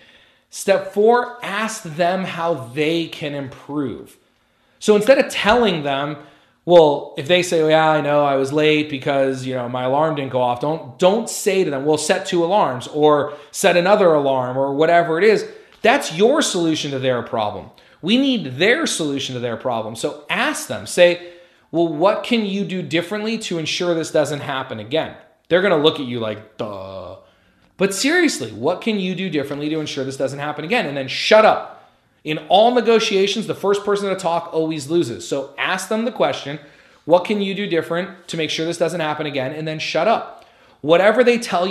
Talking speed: 195 wpm